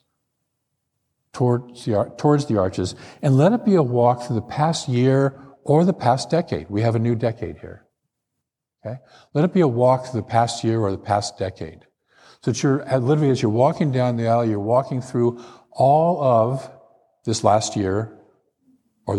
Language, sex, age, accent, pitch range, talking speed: English, male, 50-69, American, 100-125 Hz, 185 wpm